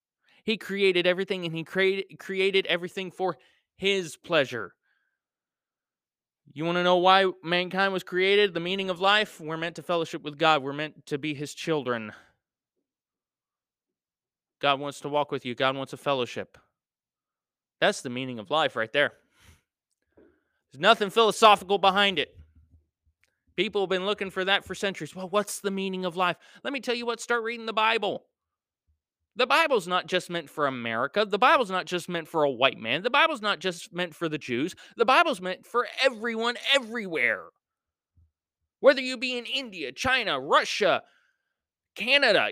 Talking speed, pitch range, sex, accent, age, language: 165 wpm, 120-195 Hz, male, American, 30-49, English